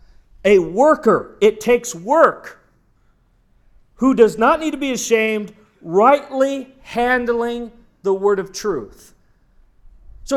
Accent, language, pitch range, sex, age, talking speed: American, English, 200-295 Hz, male, 40-59, 110 wpm